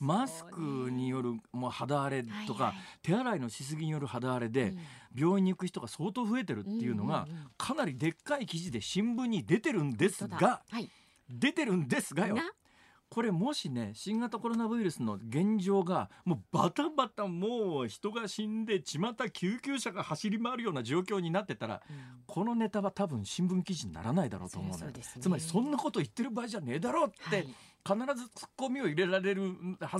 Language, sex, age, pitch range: Japanese, male, 40-59, 150-230 Hz